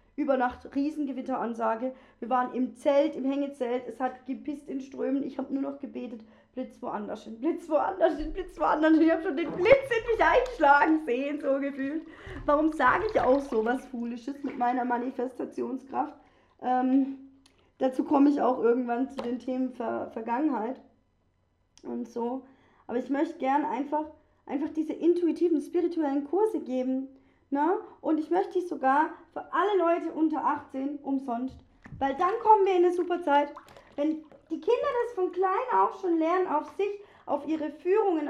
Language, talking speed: German, 165 wpm